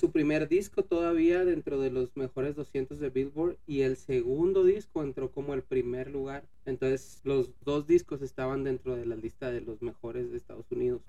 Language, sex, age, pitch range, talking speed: Spanish, male, 30-49, 130-165 Hz, 190 wpm